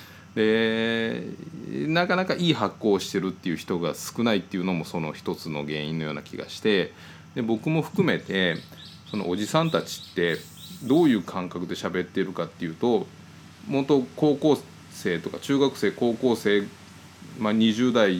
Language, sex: Japanese, male